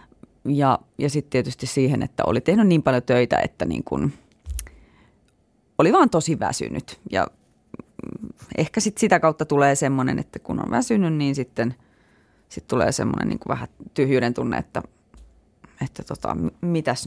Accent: native